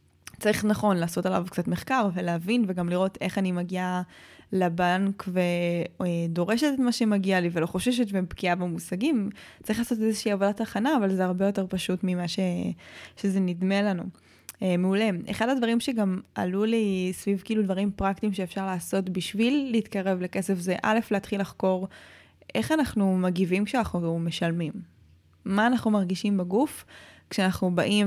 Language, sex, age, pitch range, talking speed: Hebrew, female, 20-39, 180-215 Hz, 145 wpm